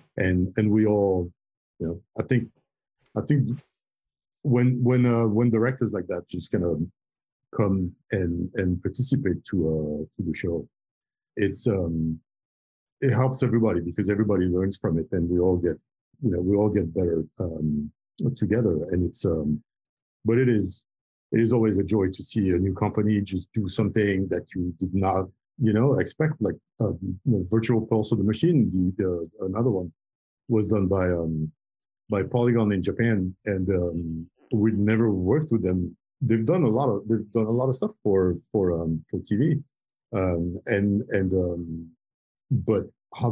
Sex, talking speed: male, 175 wpm